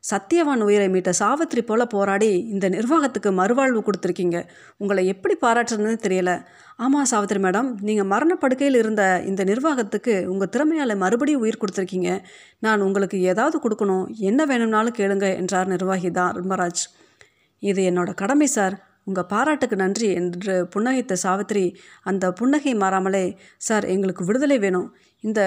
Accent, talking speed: native, 130 wpm